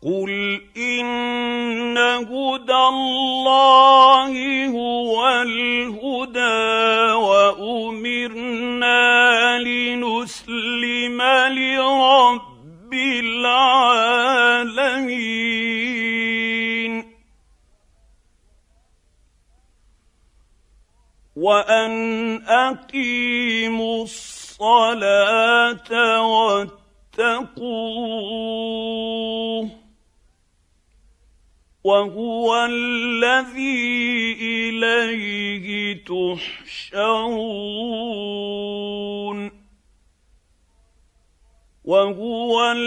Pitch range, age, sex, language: 200-240 Hz, 50-69, male, Arabic